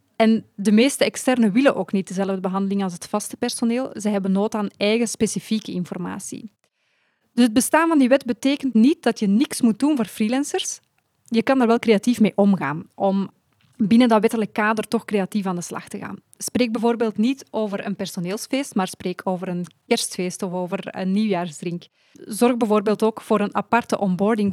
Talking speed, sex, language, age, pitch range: 185 wpm, female, Dutch, 20-39, 200-235 Hz